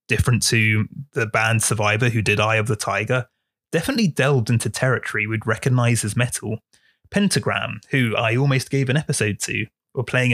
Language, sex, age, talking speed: English, male, 30-49, 170 wpm